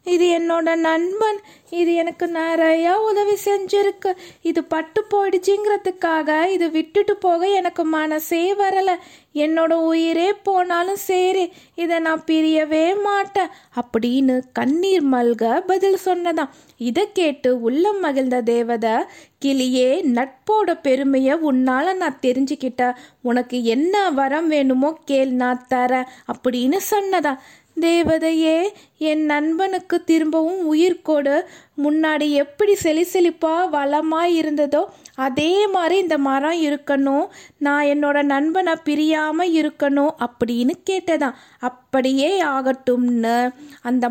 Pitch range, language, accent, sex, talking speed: 265-350 Hz, Tamil, native, female, 100 wpm